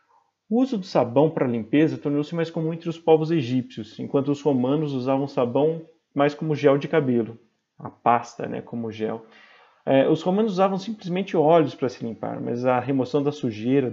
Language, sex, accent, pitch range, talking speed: Portuguese, male, Brazilian, 125-160 Hz, 180 wpm